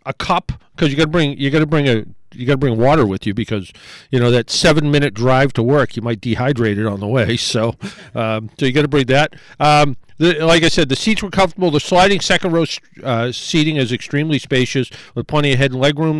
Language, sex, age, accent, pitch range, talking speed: English, male, 50-69, American, 130-170 Hz, 235 wpm